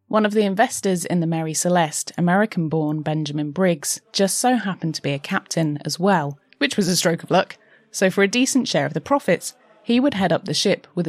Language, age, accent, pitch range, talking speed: English, 30-49, British, 155-210 Hz, 220 wpm